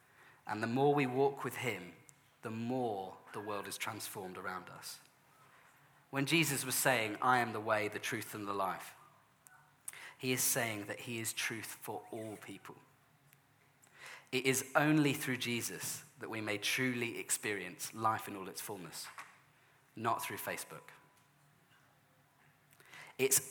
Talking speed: 145 wpm